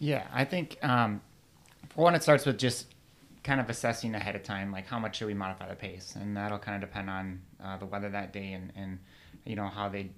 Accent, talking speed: American, 240 wpm